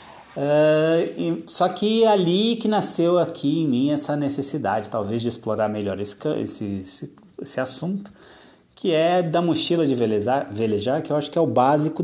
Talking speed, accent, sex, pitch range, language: 170 wpm, Brazilian, male, 110-160 Hz, Portuguese